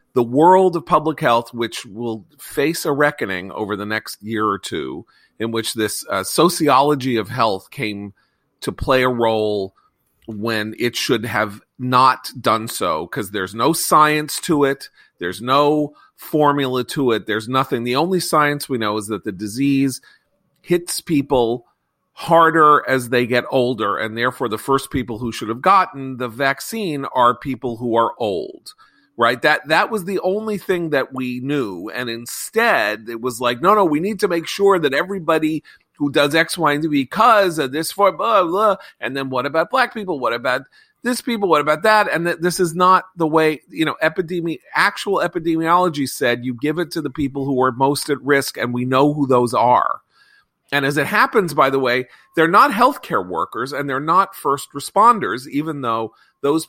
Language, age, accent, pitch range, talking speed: English, 40-59, American, 120-165 Hz, 185 wpm